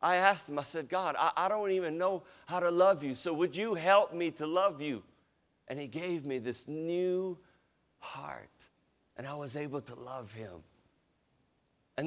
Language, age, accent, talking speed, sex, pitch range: English, 50-69, American, 190 wpm, male, 135-180 Hz